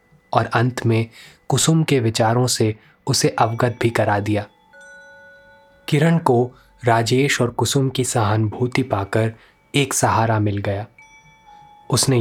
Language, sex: Hindi, male